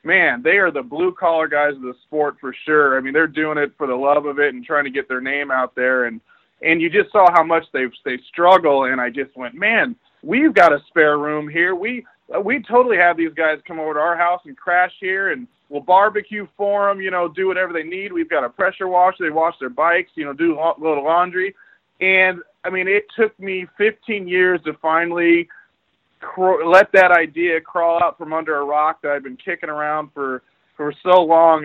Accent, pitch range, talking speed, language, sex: American, 145-180 Hz, 225 wpm, English, male